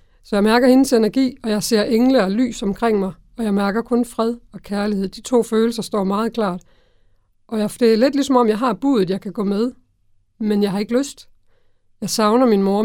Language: Danish